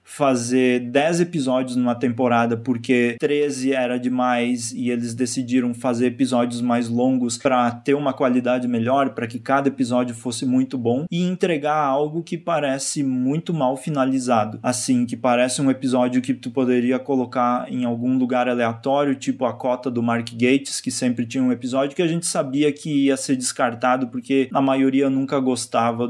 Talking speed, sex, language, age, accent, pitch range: 170 wpm, male, Portuguese, 20-39, Brazilian, 125-165 Hz